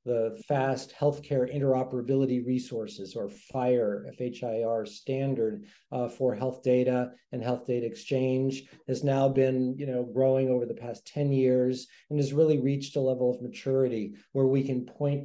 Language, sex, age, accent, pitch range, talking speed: English, male, 40-59, American, 115-135 Hz, 155 wpm